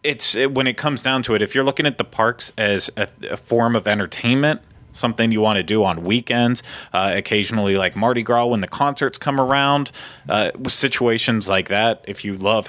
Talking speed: 215 wpm